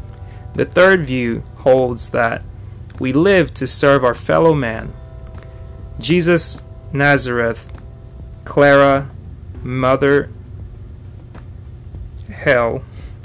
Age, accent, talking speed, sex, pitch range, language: 30-49, American, 75 wpm, male, 105-145 Hz, English